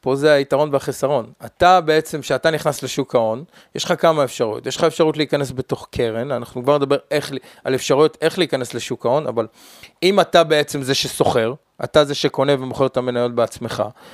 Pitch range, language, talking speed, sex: 130-165 Hz, Hebrew, 180 wpm, male